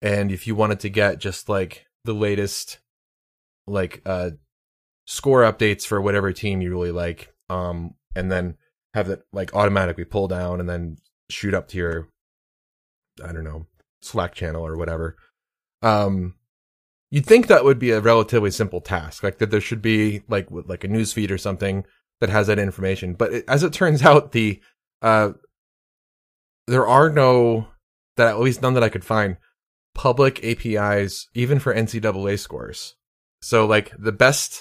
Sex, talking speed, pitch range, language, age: male, 170 wpm, 95-110 Hz, English, 30-49